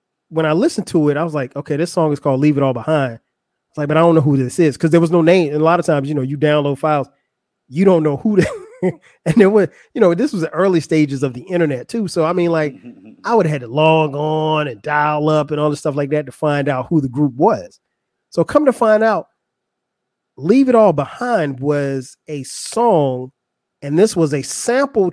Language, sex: English, male